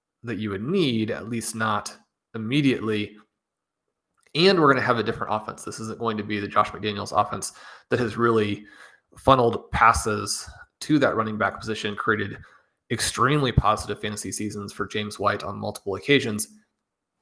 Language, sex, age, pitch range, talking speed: English, male, 20-39, 105-120 Hz, 155 wpm